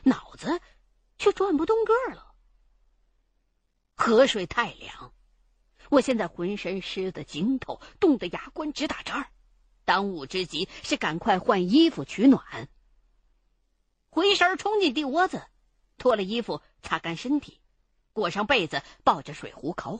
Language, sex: Chinese, female